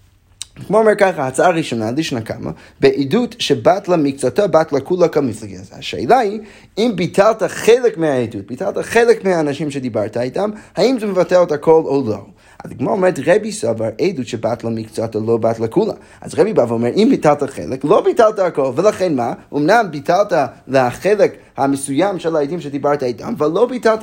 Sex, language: male, Hebrew